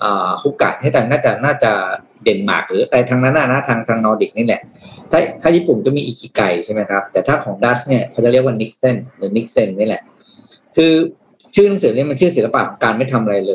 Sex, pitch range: male, 115-140 Hz